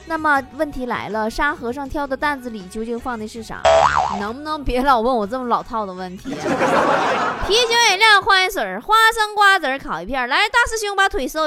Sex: female